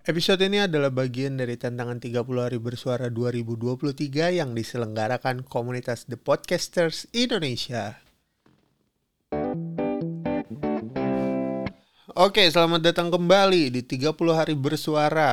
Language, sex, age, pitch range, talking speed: Indonesian, male, 30-49, 125-165 Hz, 100 wpm